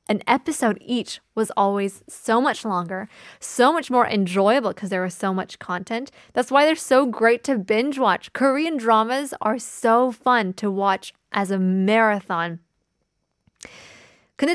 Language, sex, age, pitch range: Korean, female, 20-39, 195-255 Hz